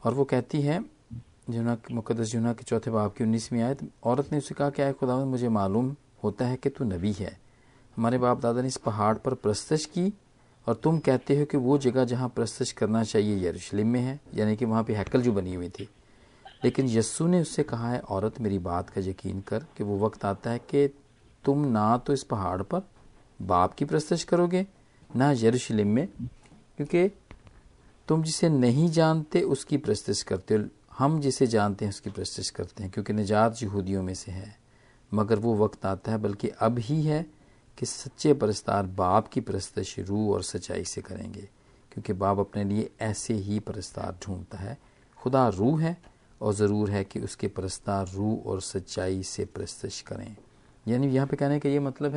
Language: Hindi